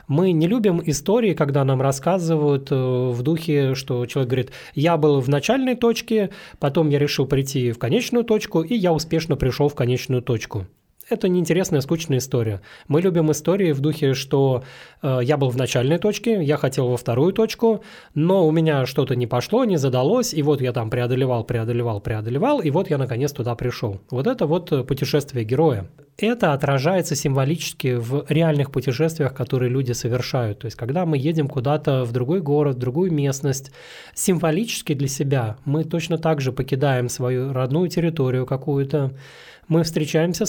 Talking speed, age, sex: 165 wpm, 20-39, male